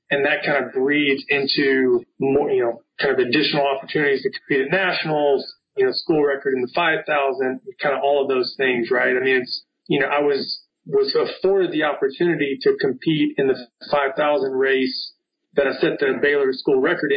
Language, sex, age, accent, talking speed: English, male, 30-49, American, 190 wpm